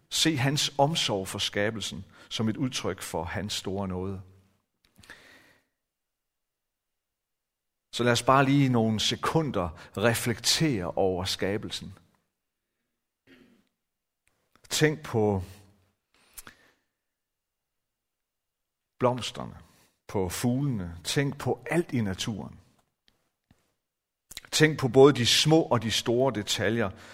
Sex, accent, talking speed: male, native, 90 wpm